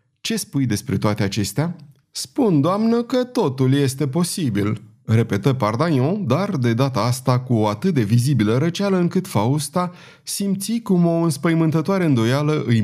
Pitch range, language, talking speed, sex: 120-160 Hz, Romanian, 145 wpm, male